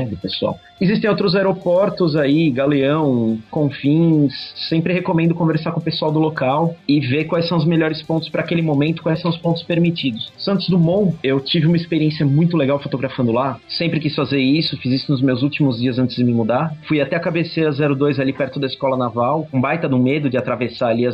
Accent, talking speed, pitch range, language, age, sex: Brazilian, 205 wpm, 135-165 Hz, English, 30-49, male